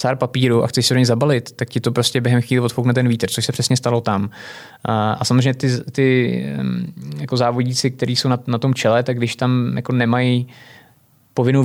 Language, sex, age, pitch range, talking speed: Czech, male, 20-39, 110-125 Hz, 200 wpm